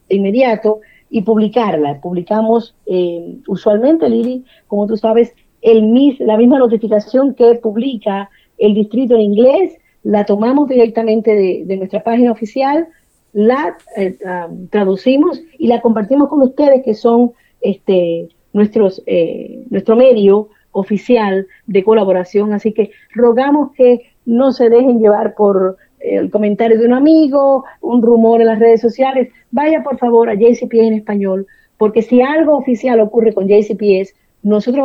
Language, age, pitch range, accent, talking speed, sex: Spanish, 40-59, 205-250 Hz, American, 140 wpm, female